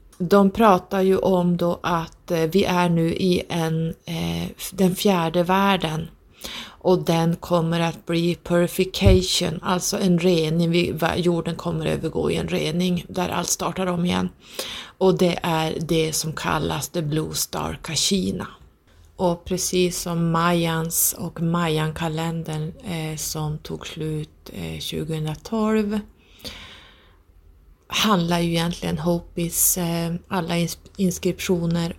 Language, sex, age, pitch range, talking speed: Swedish, female, 30-49, 155-175 Hz, 115 wpm